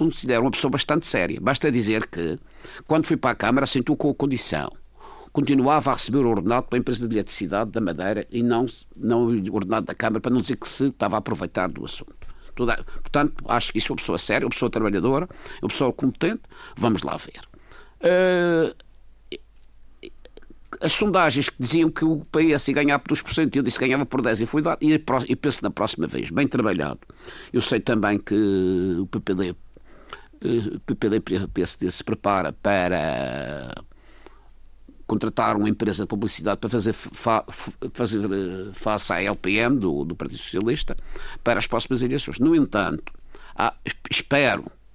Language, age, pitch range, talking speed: Portuguese, 50-69, 110-150 Hz, 160 wpm